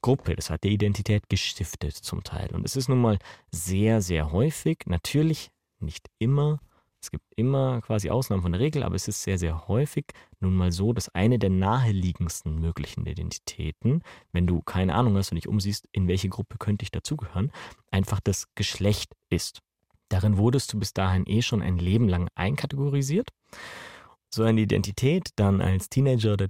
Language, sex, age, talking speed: German, male, 30-49, 175 wpm